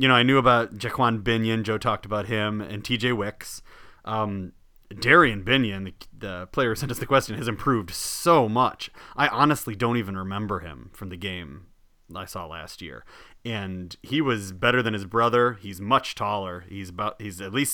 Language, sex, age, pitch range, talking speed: English, male, 30-49, 100-125 Hz, 190 wpm